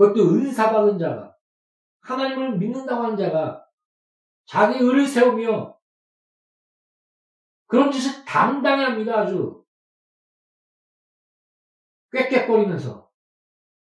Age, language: 60-79, Korean